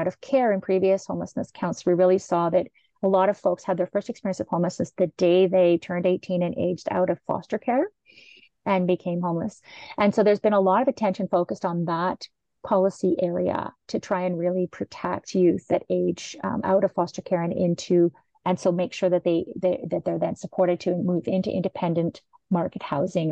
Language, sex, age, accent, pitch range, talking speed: English, female, 30-49, American, 180-210 Hz, 205 wpm